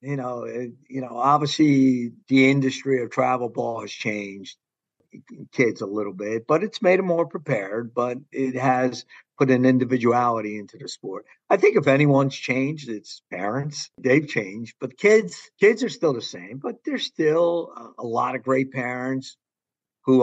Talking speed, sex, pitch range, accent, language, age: 170 wpm, male, 120-155 Hz, American, English, 50-69